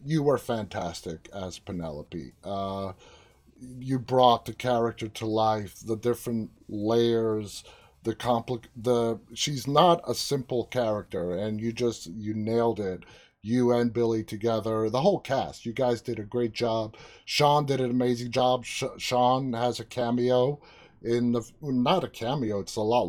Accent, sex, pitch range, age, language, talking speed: American, male, 105-125 Hz, 30-49, English, 160 wpm